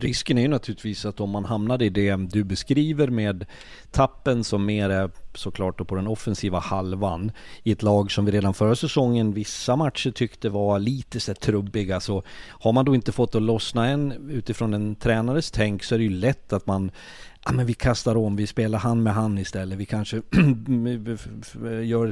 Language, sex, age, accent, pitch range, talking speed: Swedish, male, 40-59, native, 100-120 Hz, 200 wpm